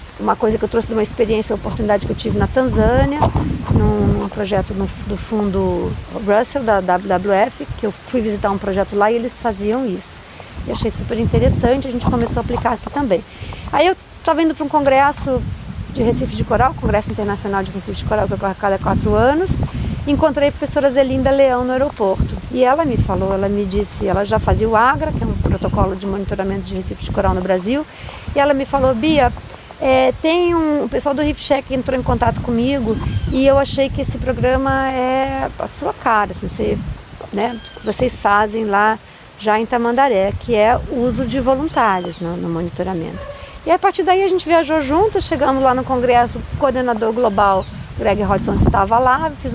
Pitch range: 210-275 Hz